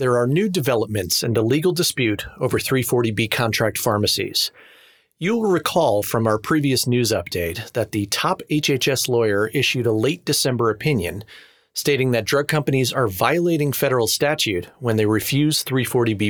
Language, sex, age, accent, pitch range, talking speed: English, male, 30-49, American, 110-150 Hz, 150 wpm